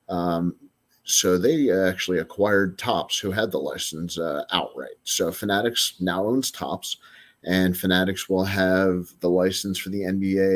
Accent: American